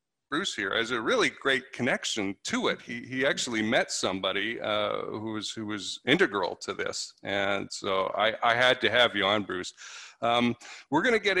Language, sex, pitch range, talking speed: English, male, 105-130 Hz, 195 wpm